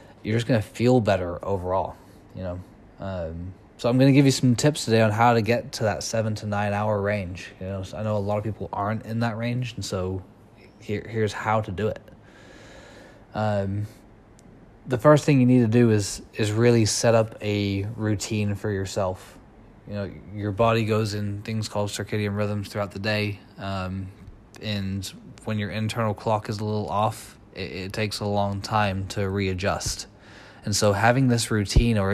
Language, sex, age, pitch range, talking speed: English, male, 20-39, 100-110 Hz, 195 wpm